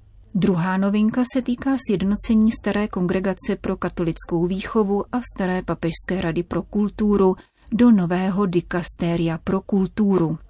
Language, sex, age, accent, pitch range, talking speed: Czech, female, 30-49, native, 175-205 Hz, 120 wpm